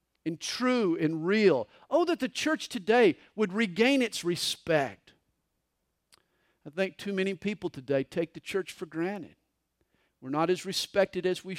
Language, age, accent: English, 50-69, American